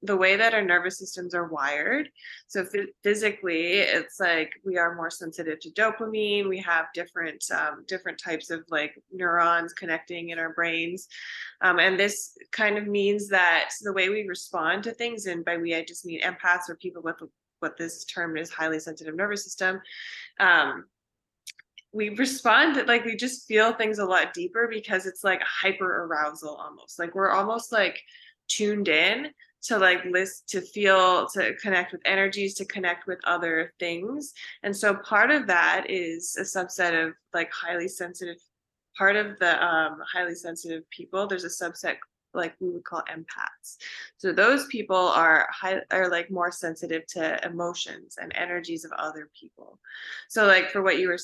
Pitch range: 170-215 Hz